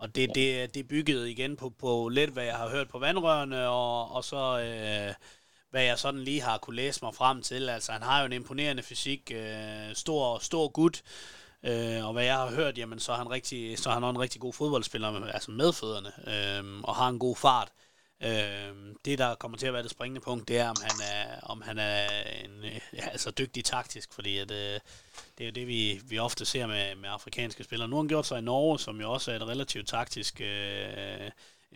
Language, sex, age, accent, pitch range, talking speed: Danish, male, 30-49, native, 110-130 Hz, 215 wpm